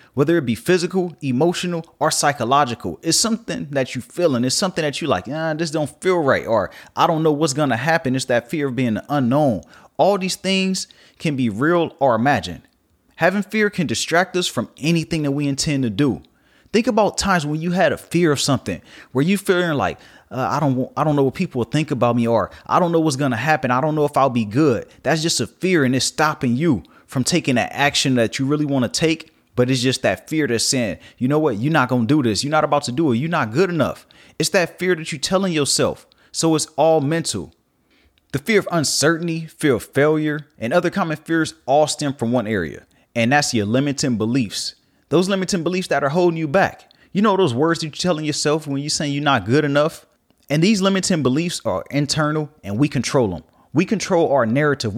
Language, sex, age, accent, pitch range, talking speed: English, male, 30-49, American, 130-170 Hz, 230 wpm